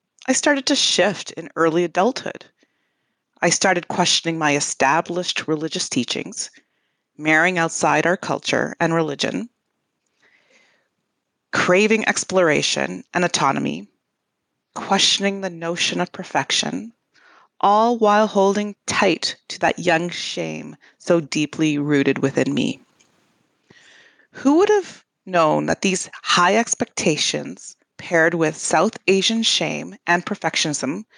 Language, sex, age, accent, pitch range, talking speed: English, female, 30-49, American, 160-200 Hz, 110 wpm